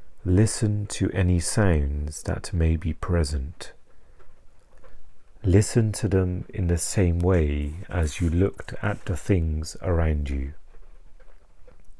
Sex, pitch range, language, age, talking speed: male, 75-95 Hz, English, 40-59, 115 wpm